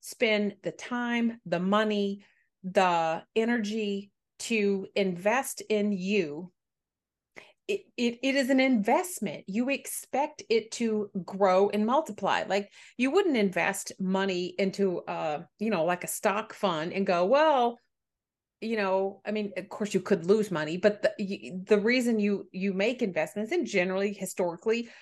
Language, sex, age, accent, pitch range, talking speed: English, female, 30-49, American, 185-225 Hz, 145 wpm